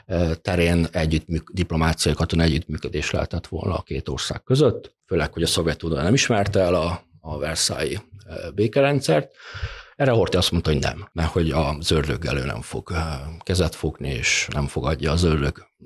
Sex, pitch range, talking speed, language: male, 85-105 Hz, 165 wpm, Hungarian